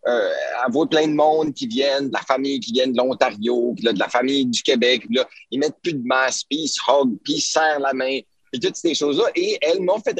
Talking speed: 260 wpm